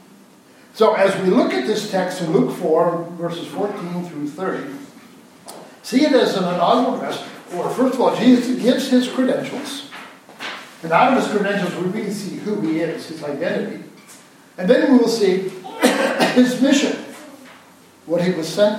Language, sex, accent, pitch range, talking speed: English, male, American, 175-245 Hz, 165 wpm